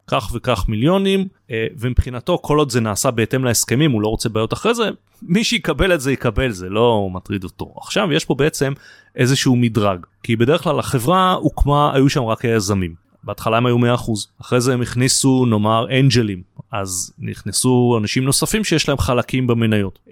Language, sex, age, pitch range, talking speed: Hebrew, male, 30-49, 105-145 Hz, 175 wpm